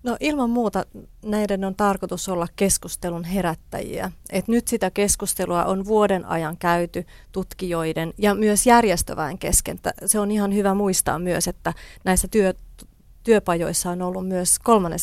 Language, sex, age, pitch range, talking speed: Finnish, female, 30-49, 175-210 Hz, 145 wpm